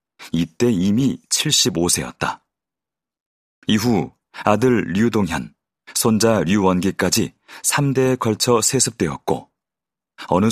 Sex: male